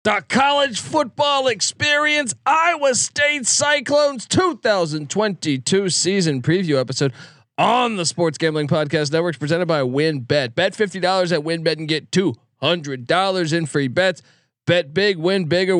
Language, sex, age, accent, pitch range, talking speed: English, male, 40-59, American, 145-205 Hz, 130 wpm